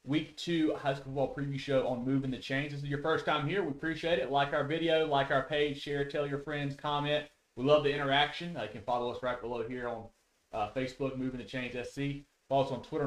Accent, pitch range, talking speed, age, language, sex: American, 120-145 Hz, 250 wpm, 30-49, English, male